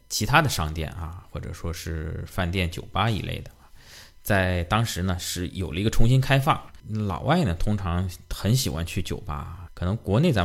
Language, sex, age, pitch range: Chinese, male, 20-39, 85-105 Hz